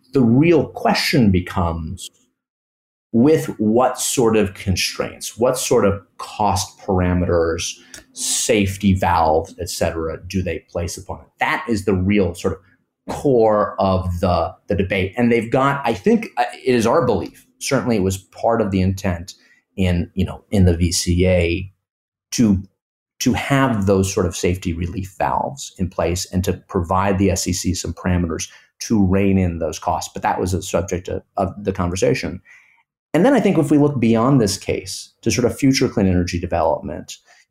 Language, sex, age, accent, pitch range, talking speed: English, male, 30-49, American, 90-120 Hz, 170 wpm